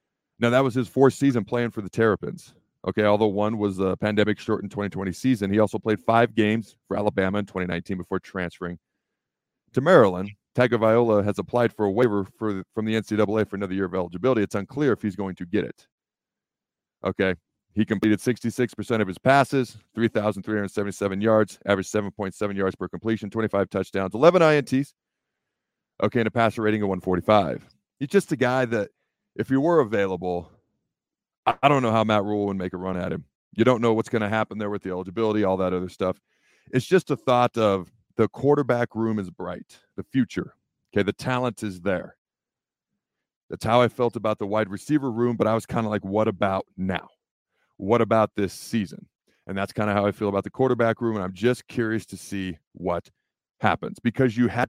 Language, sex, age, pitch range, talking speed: English, male, 40-59, 100-120 Hz, 195 wpm